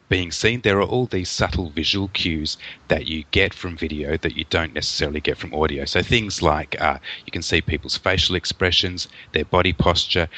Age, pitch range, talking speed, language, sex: 30-49, 80-100 Hz, 195 wpm, English, male